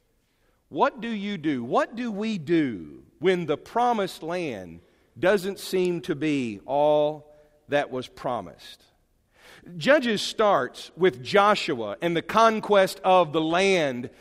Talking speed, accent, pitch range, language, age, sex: 125 wpm, American, 160-230 Hz, English, 40-59, male